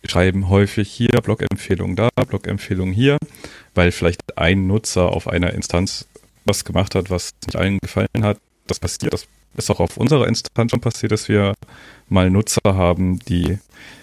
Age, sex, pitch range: 30-49, male, 95-115 Hz